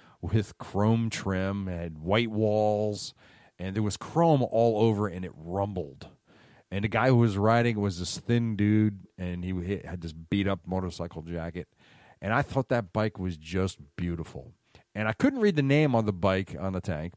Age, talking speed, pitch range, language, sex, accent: 40-59, 185 wpm, 90-125 Hz, English, male, American